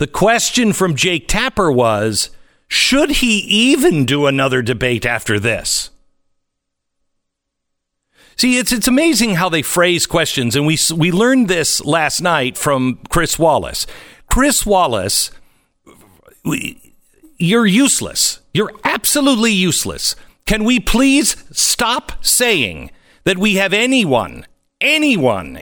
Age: 50-69